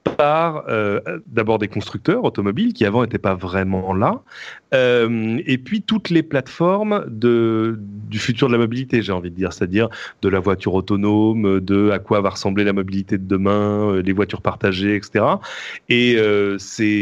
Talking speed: 175 wpm